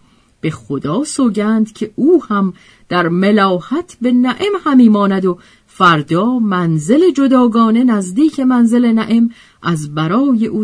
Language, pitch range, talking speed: Persian, 165-255 Hz, 125 wpm